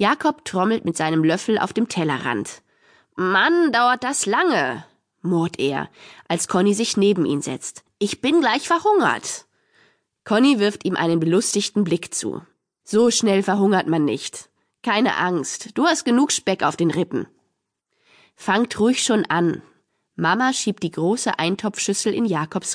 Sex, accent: female, German